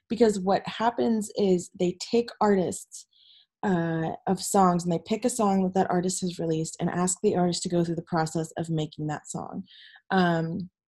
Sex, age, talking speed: female, 20-39, 190 wpm